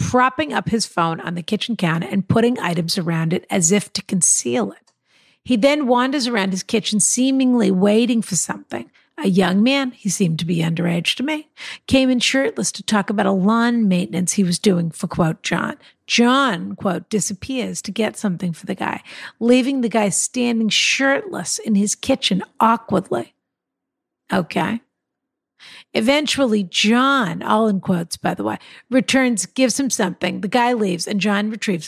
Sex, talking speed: female, 170 wpm